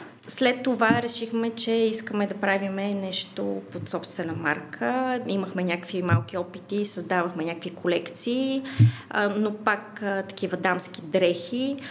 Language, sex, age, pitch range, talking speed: Bulgarian, female, 20-39, 185-235 Hz, 115 wpm